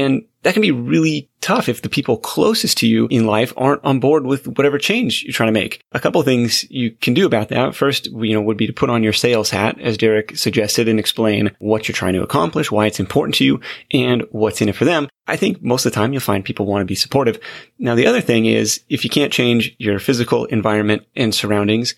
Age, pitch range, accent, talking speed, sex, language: 30-49, 105-130 Hz, American, 250 wpm, male, English